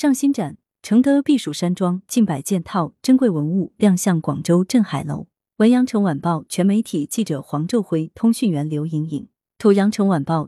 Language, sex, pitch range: Chinese, female, 165-225 Hz